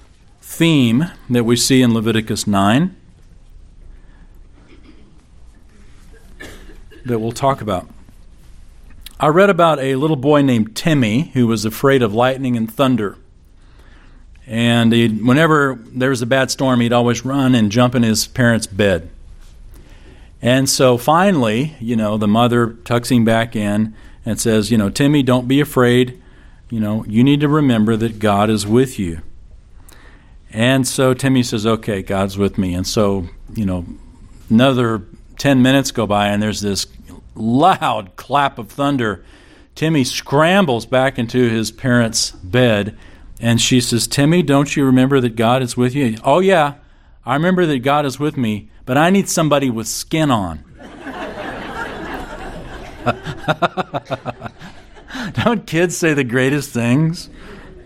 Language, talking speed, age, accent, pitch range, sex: English, 140 wpm, 40-59, American, 105-135 Hz, male